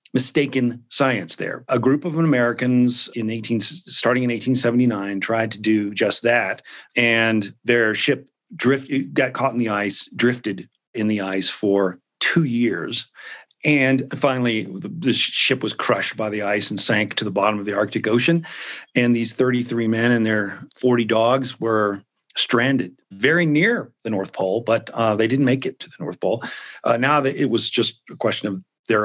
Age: 40-59